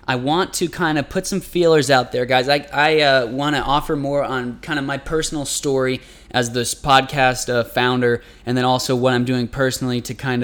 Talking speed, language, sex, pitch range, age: 220 wpm, English, male, 120-145 Hz, 20-39